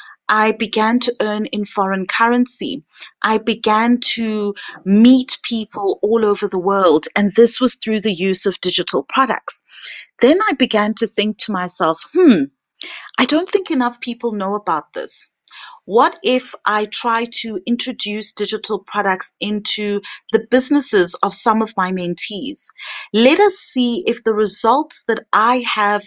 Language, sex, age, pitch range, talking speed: English, female, 30-49, 215-280 Hz, 150 wpm